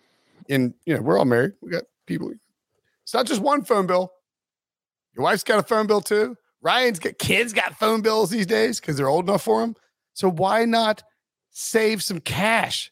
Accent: American